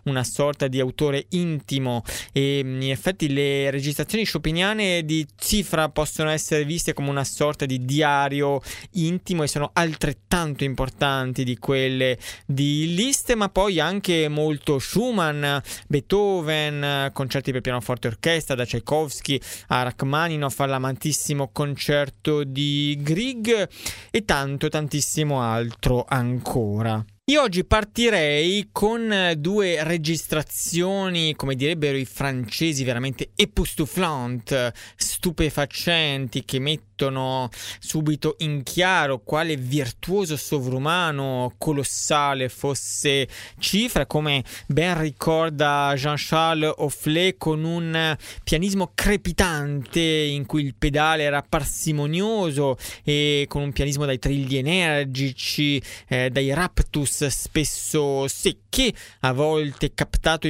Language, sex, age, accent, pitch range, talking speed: Italian, male, 20-39, native, 135-160 Hz, 105 wpm